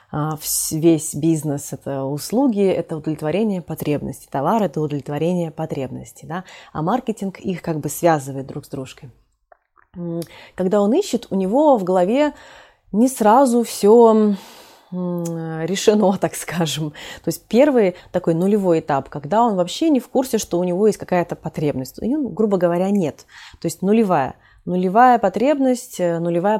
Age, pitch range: 20-39, 160-220 Hz